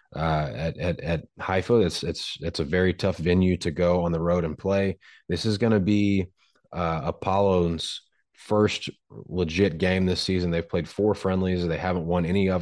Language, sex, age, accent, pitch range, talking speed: English, male, 30-49, American, 85-100 Hz, 190 wpm